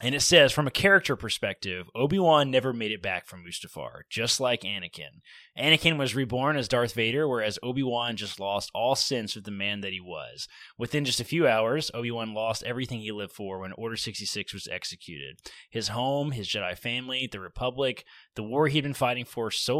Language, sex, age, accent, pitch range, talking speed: English, male, 20-39, American, 105-130 Hz, 195 wpm